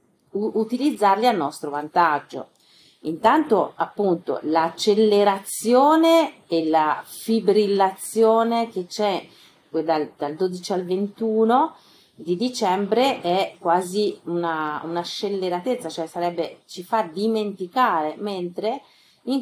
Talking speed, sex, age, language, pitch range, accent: 95 wpm, female, 40-59, Italian, 165-215 Hz, native